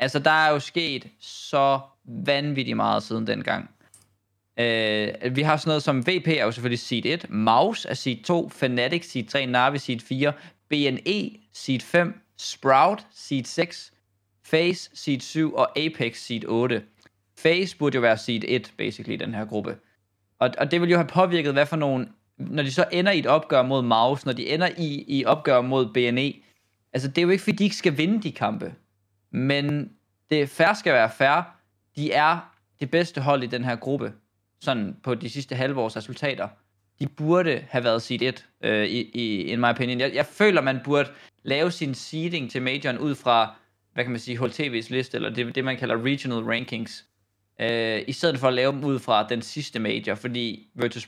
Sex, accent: male, native